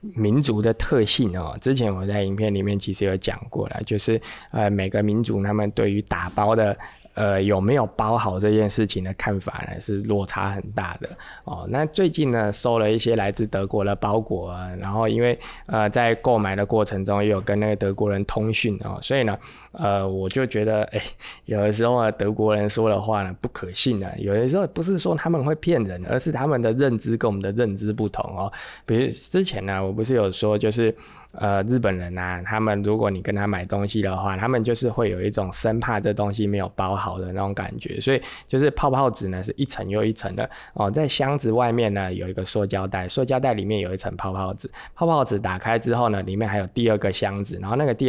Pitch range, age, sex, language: 100-120 Hz, 20-39, male, Chinese